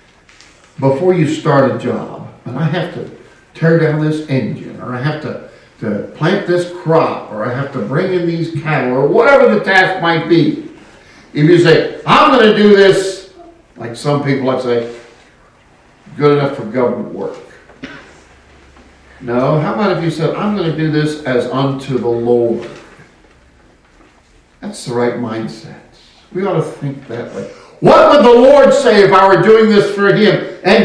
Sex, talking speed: male, 175 wpm